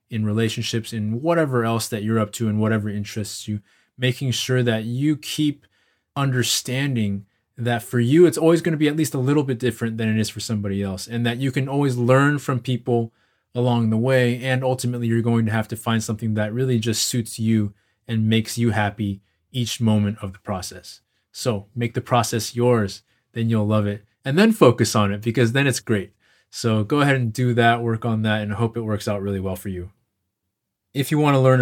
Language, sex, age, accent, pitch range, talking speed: English, male, 20-39, American, 110-125 Hz, 215 wpm